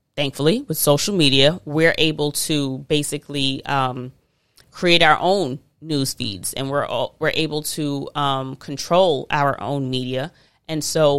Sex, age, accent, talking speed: female, 30-49, American, 145 wpm